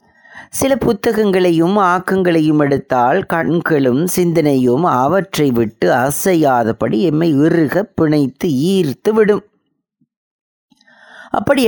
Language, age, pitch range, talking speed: Tamil, 30-49, 145-195 Hz, 75 wpm